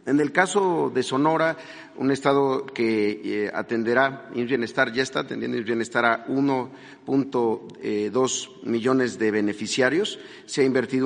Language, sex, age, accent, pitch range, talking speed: Spanish, male, 40-59, Mexican, 115-145 Hz, 140 wpm